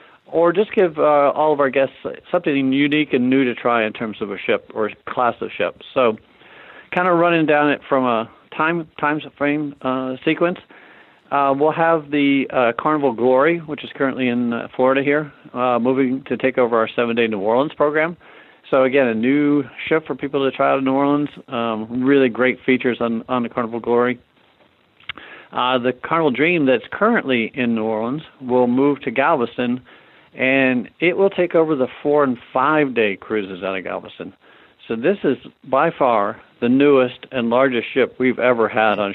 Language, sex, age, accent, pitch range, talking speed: English, male, 50-69, American, 115-145 Hz, 190 wpm